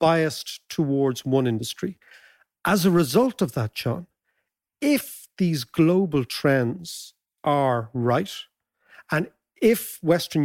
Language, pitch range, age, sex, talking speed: English, 135-185 Hz, 50-69, male, 110 wpm